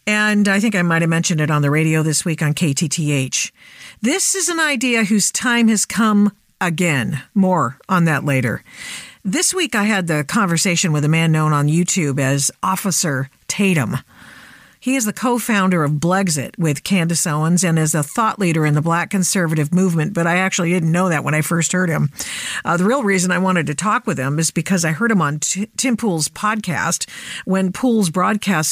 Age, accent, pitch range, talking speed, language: 50-69, American, 160-210 Hz, 200 wpm, English